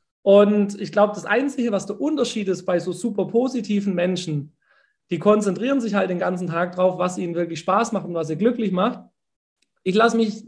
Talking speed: 200 wpm